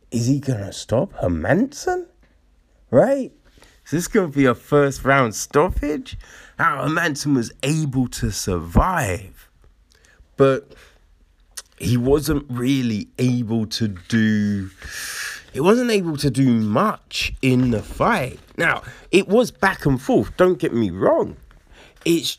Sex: male